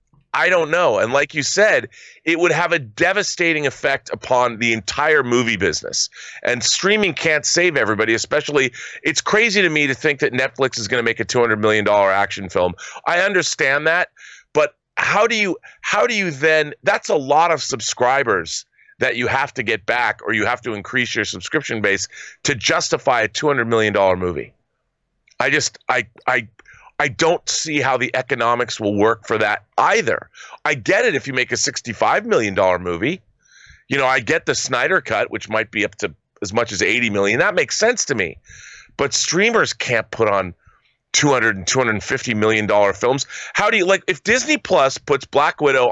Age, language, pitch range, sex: 30-49, English, 110-165 Hz, male